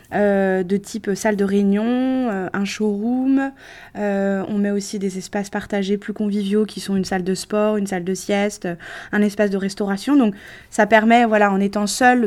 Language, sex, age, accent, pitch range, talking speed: French, female, 20-39, French, 195-225 Hz, 200 wpm